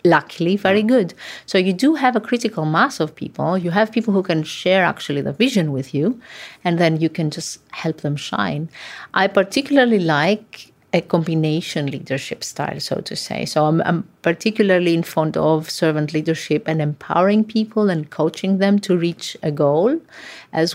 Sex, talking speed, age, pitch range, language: female, 175 wpm, 30-49, 150-195 Hz, German